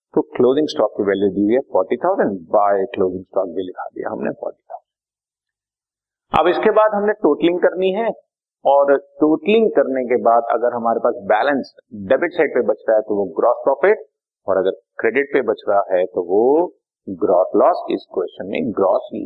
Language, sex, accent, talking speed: Hindi, male, native, 160 wpm